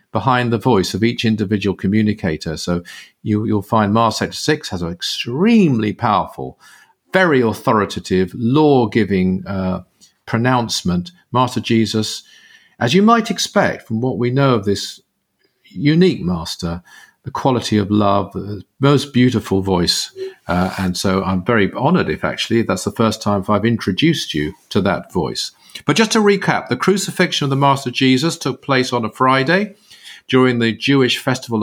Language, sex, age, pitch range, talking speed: English, male, 50-69, 110-145 Hz, 150 wpm